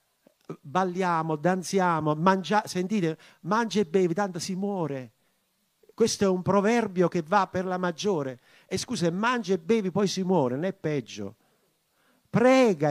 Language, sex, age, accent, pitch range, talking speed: Italian, male, 50-69, native, 150-215 Hz, 140 wpm